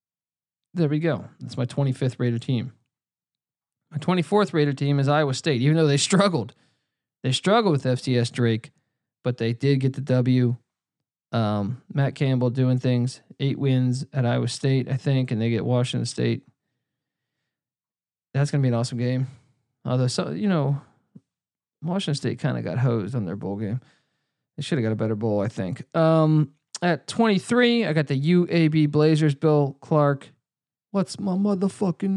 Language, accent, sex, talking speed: English, American, male, 170 wpm